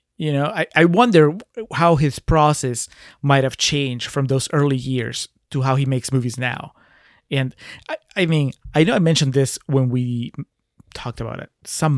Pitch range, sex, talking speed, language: 125-145 Hz, male, 180 wpm, English